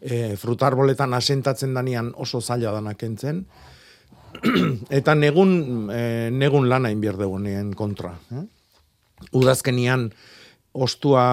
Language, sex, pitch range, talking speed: Spanish, male, 110-135 Hz, 100 wpm